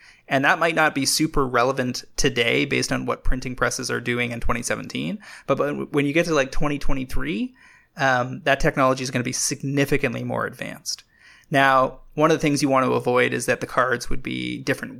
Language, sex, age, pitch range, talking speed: English, male, 20-39, 130-150 Hz, 200 wpm